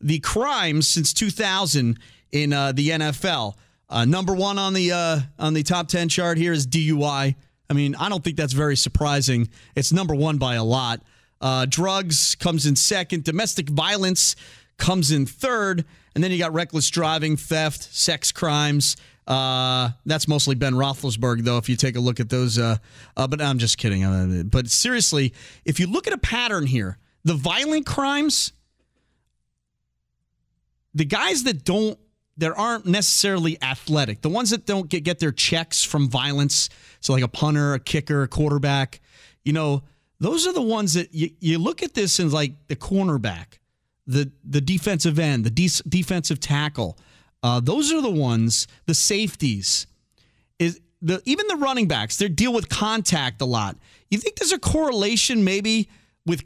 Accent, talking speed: American, 170 wpm